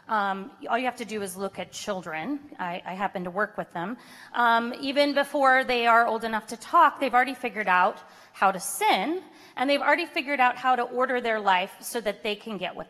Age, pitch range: 30-49, 210-275 Hz